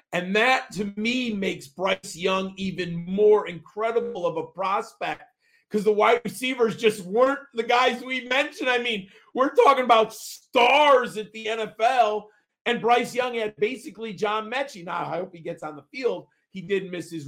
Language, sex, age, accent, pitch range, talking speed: English, male, 40-59, American, 190-245 Hz, 175 wpm